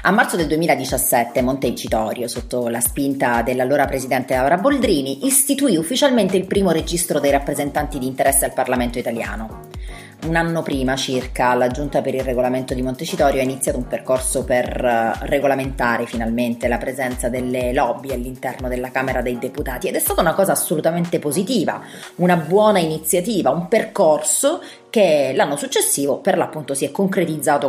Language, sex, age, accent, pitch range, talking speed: Italian, female, 30-49, native, 130-180 Hz, 155 wpm